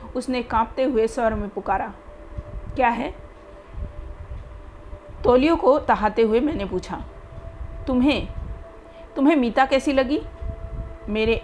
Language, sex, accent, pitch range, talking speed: Hindi, female, native, 180-245 Hz, 105 wpm